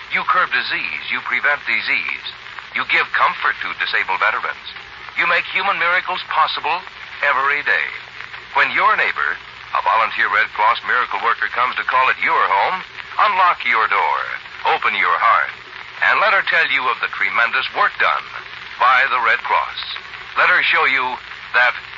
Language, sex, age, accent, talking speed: English, male, 60-79, American, 160 wpm